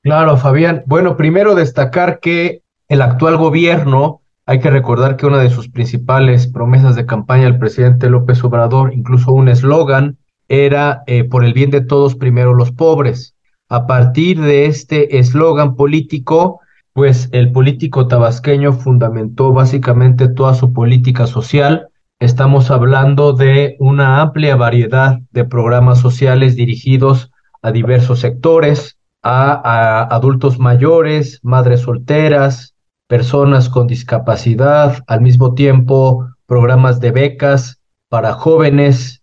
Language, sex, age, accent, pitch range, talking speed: Spanish, male, 40-59, Mexican, 125-145 Hz, 125 wpm